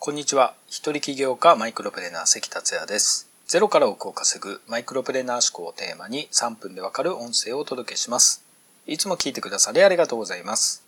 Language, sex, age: Japanese, male, 40-59